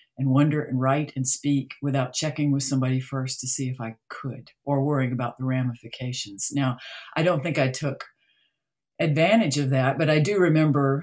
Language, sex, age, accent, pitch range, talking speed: English, female, 50-69, American, 135-165 Hz, 185 wpm